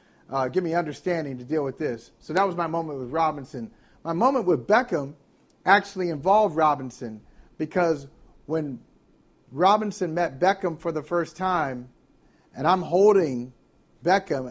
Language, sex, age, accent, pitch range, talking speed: English, male, 40-59, American, 160-195 Hz, 145 wpm